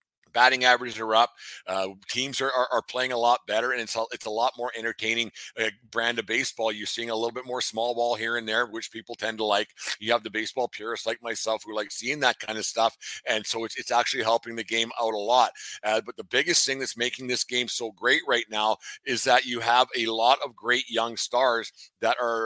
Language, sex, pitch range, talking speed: English, male, 110-125 Hz, 245 wpm